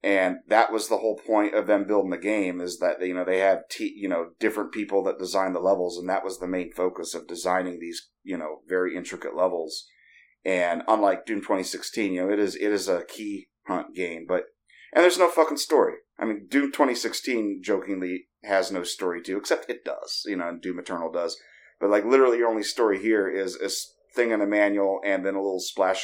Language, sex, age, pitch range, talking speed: English, male, 30-49, 90-130 Hz, 220 wpm